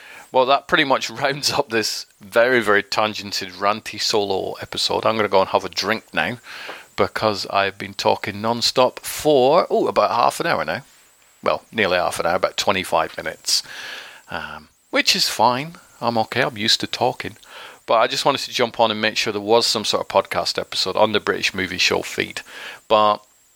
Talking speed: 195 wpm